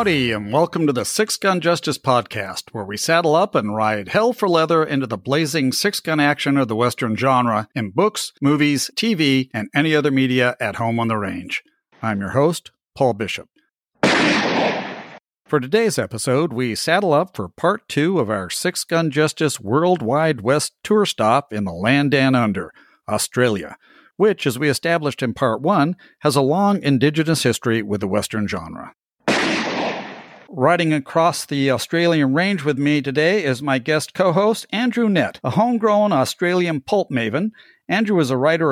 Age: 50-69